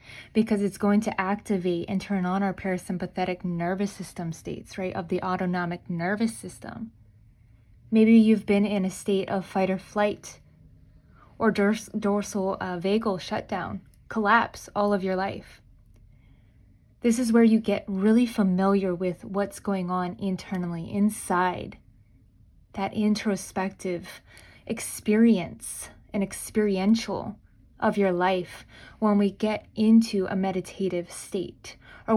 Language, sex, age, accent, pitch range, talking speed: English, female, 20-39, American, 180-210 Hz, 125 wpm